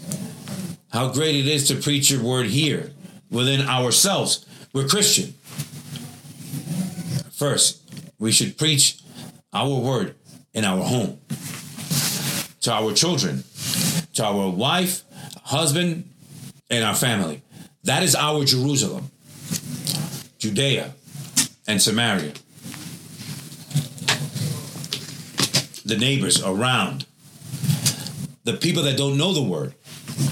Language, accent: English, American